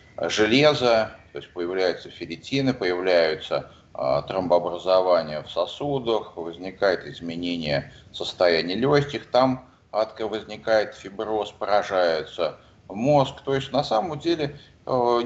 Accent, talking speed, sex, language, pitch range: native, 100 wpm, male, Russian, 95-125 Hz